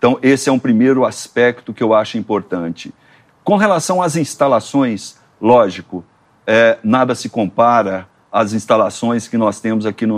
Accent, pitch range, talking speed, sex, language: Brazilian, 115-145 Hz, 145 wpm, male, Portuguese